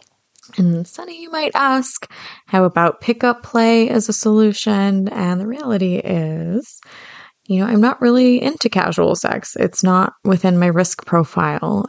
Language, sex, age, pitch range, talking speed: English, female, 20-39, 170-215 Hz, 145 wpm